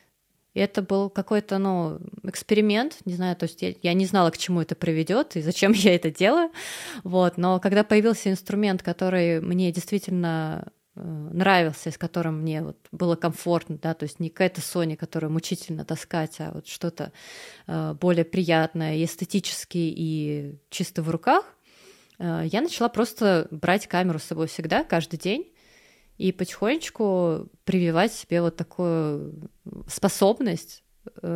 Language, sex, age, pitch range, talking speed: Russian, female, 20-39, 165-195 Hz, 125 wpm